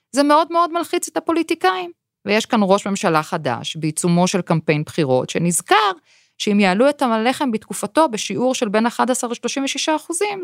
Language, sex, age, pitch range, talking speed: Hebrew, female, 30-49, 175-270 Hz, 155 wpm